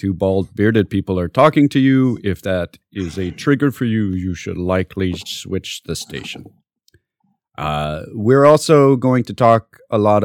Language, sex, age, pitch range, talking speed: English, male, 40-59, 95-135 Hz, 165 wpm